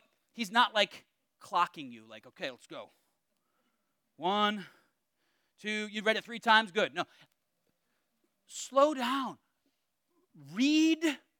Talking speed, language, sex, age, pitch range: 115 wpm, English, male, 30-49, 210-290 Hz